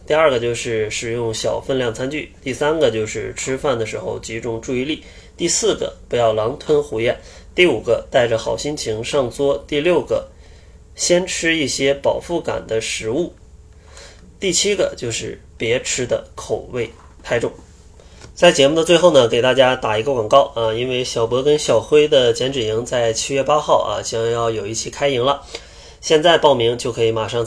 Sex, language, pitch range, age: male, Chinese, 115-160 Hz, 20-39